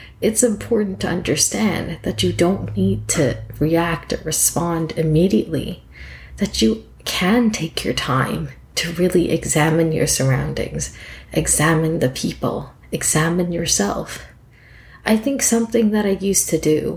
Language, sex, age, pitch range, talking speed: English, female, 30-49, 155-195 Hz, 130 wpm